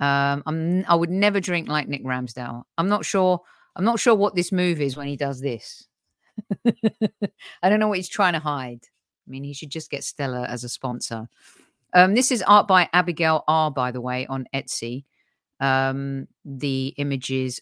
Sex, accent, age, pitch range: female, British, 50-69, 135-185 Hz